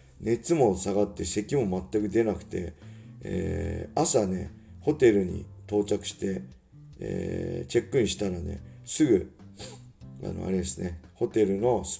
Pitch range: 95-115 Hz